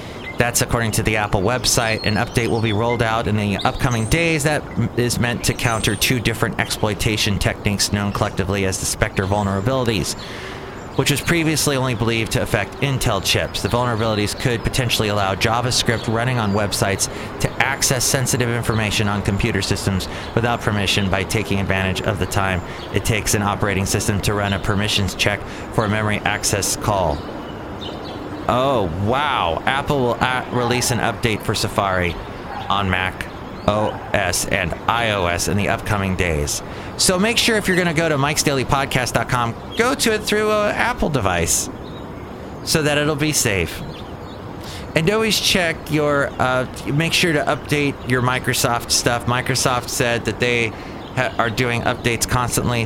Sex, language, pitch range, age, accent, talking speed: male, English, 100-125 Hz, 30-49, American, 160 wpm